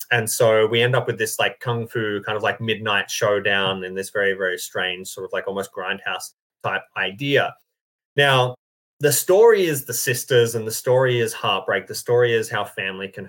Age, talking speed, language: 20-39, 200 wpm, English